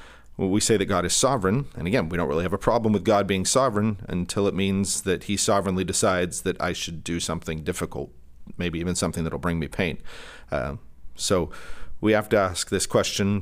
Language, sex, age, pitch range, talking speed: English, male, 40-59, 90-110 Hz, 210 wpm